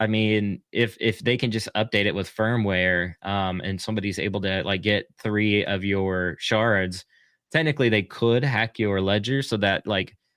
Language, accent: English, American